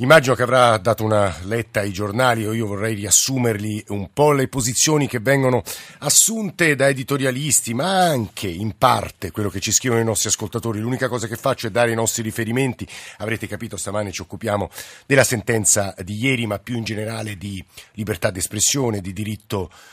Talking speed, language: 180 wpm, Italian